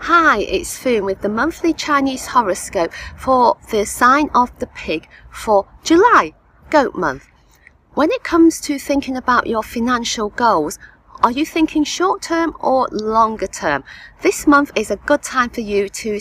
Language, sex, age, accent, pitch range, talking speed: English, female, 40-59, British, 215-310 Hz, 165 wpm